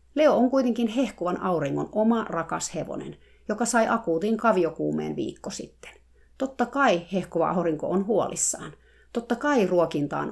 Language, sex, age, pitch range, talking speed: Finnish, female, 30-49, 160-230 Hz, 135 wpm